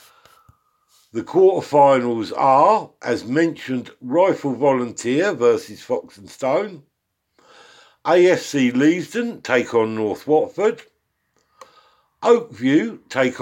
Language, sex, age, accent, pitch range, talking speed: English, male, 60-79, British, 120-155 Hz, 85 wpm